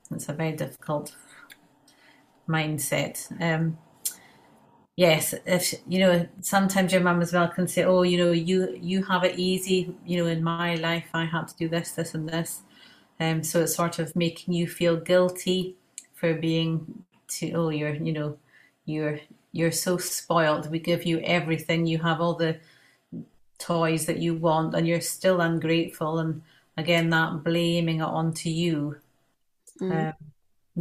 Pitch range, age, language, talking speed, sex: 155-175 Hz, 30-49, English, 165 wpm, female